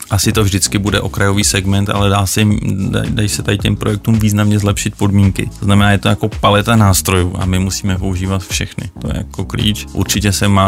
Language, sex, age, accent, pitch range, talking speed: Czech, male, 30-49, native, 95-105 Hz, 210 wpm